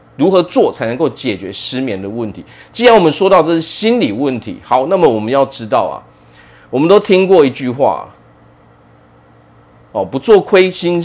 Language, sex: Chinese, male